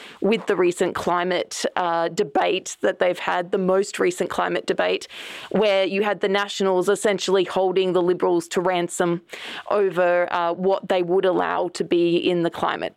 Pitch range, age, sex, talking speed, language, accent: 180-205 Hz, 20-39, female, 165 wpm, English, Australian